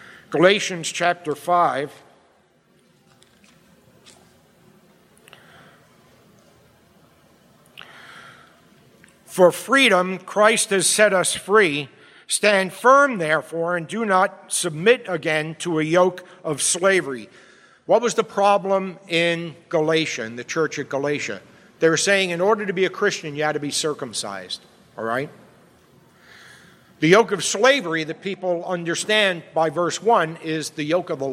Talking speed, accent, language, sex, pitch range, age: 125 wpm, American, English, male, 160-195 Hz, 60-79